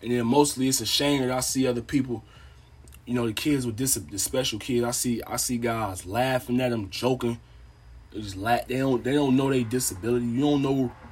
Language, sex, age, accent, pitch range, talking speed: English, male, 20-39, American, 105-140 Hz, 220 wpm